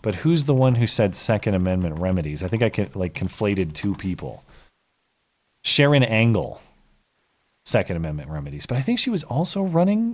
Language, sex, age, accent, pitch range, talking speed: English, male, 30-49, American, 95-130 Hz, 170 wpm